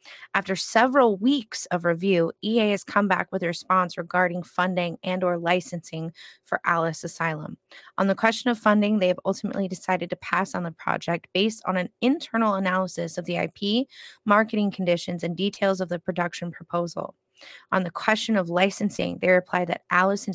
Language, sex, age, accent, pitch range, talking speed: English, female, 20-39, American, 180-210 Hz, 175 wpm